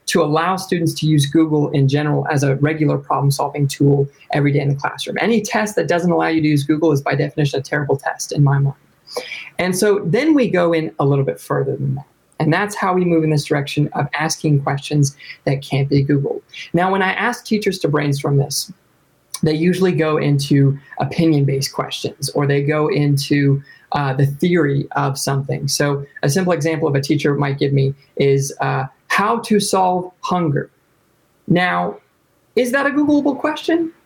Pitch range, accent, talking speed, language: 145-190 Hz, American, 190 wpm, English